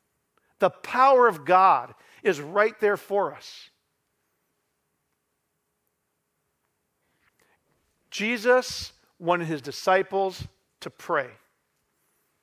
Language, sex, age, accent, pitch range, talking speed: English, male, 40-59, American, 175-245 Hz, 70 wpm